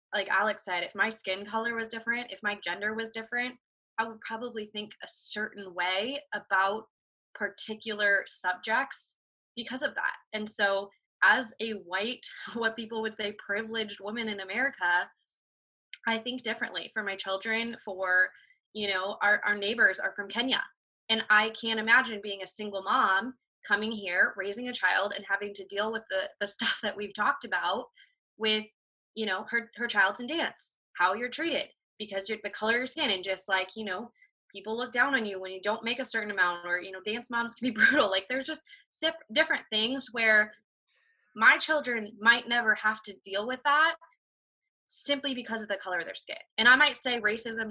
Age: 20-39